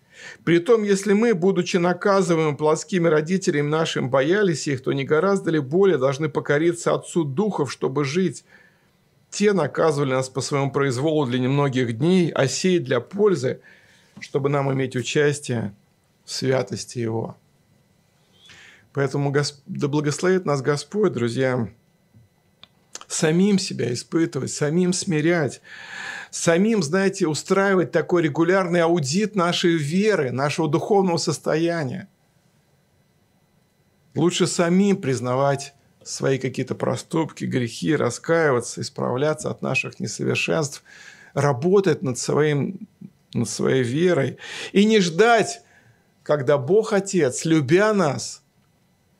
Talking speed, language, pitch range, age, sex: 110 wpm, Russian, 140-180 Hz, 50-69, male